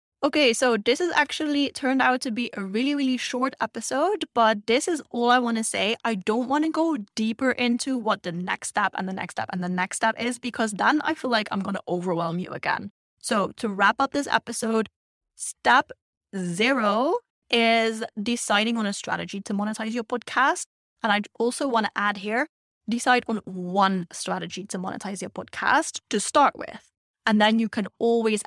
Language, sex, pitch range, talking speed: English, female, 200-255 Hz, 195 wpm